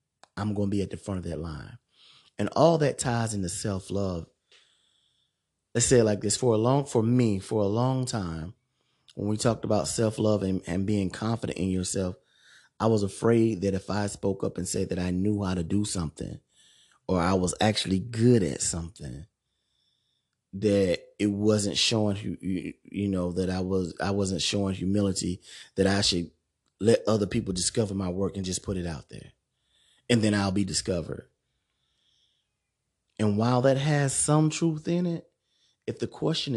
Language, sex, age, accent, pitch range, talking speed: English, male, 30-49, American, 95-135 Hz, 180 wpm